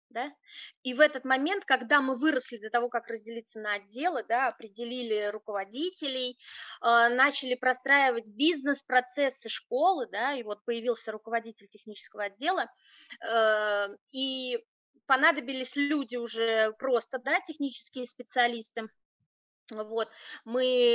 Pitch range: 220-270 Hz